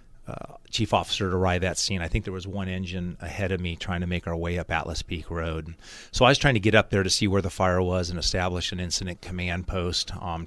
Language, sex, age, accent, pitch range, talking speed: English, male, 30-49, American, 85-100 Hz, 265 wpm